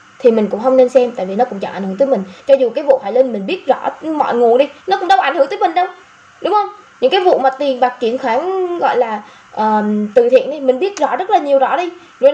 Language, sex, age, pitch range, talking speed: Vietnamese, female, 10-29, 250-350 Hz, 290 wpm